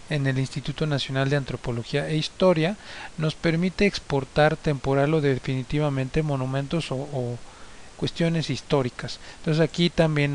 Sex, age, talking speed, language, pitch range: male, 40-59, 130 wpm, Spanish, 135-165 Hz